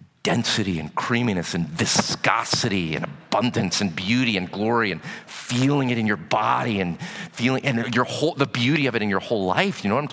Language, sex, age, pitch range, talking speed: English, male, 40-59, 130-195 Hz, 200 wpm